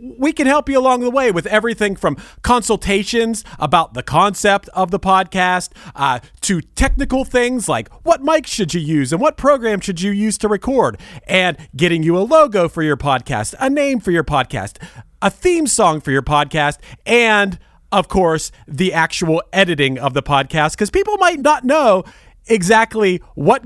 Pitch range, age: 150-210 Hz, 40-59